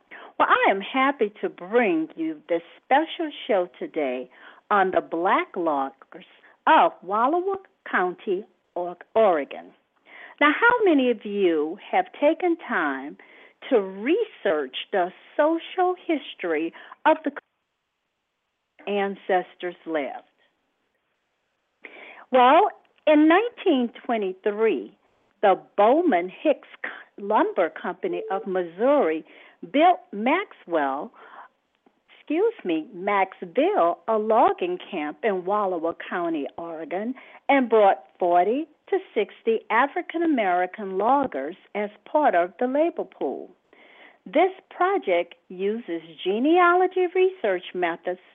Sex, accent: female, American